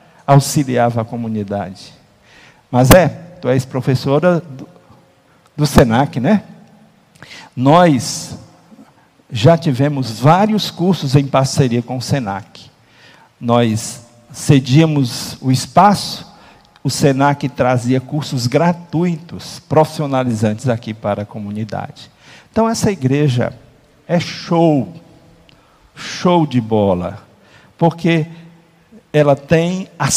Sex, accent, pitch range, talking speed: male, Brazilian, 130-165 Hz, 95 wpm